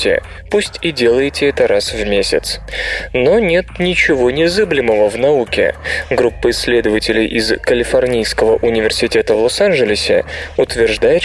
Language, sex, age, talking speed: Russian, male, 20-39, 110 wpm